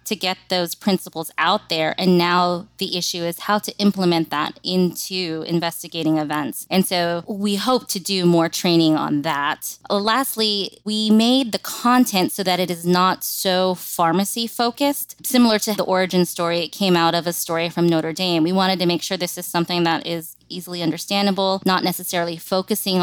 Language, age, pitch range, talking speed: English, 20-39, 170-200 Hz, 180 wpm